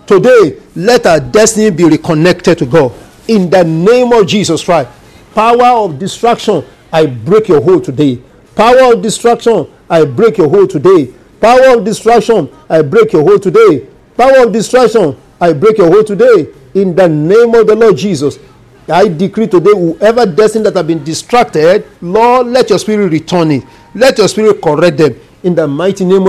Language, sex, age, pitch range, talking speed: English, male, 50-69, 165-230 Hz, 175 wpm